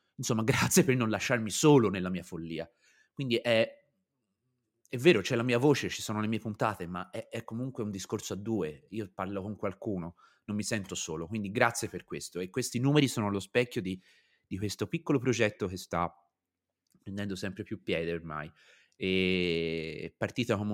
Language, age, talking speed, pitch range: Italian, 30-49, 180 wpm, 90-115 Hz